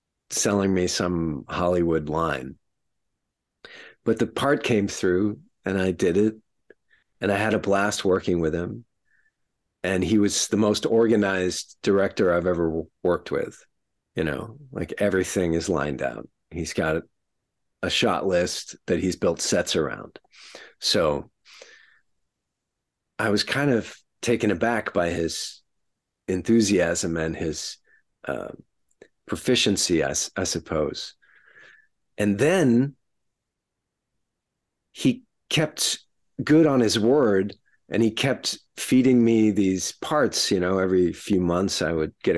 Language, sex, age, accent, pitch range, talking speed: English, male, 40-59, American, 90-110 Hz, 125 wpm